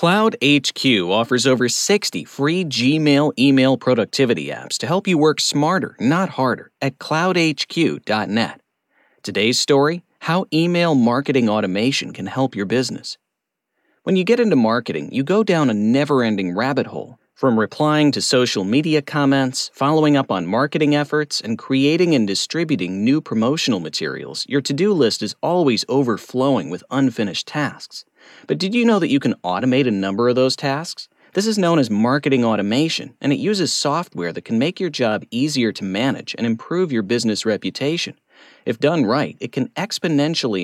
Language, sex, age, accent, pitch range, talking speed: English, male, 40-59, American, 115-165 Hz, 165 wpm